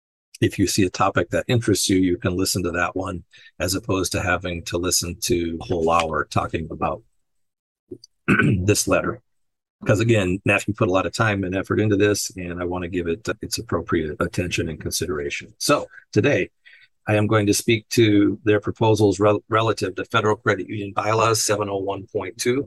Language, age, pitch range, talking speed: English, 50-69, 95-120 Hz, 185 wpm